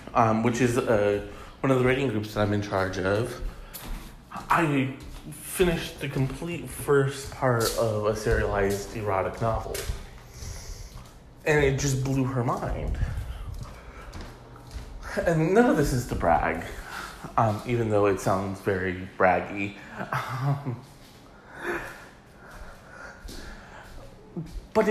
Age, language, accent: 30-49, English, American